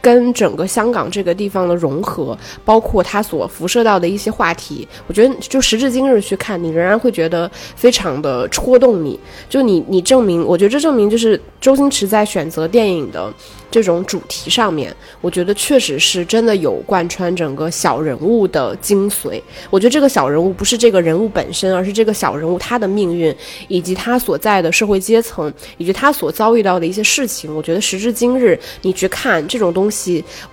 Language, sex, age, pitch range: Chinese, female, 20-39, 170-220 Hz